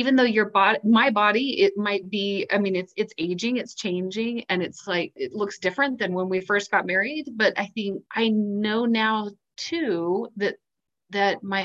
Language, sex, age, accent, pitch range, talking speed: English, female, 30-49, American, 185-220 Hz, 195 wpm